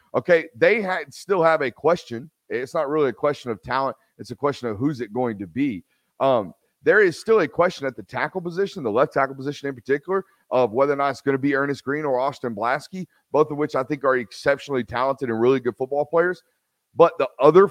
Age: 30-49